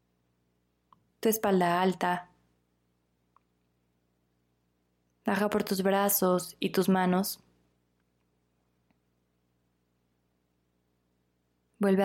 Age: 20-39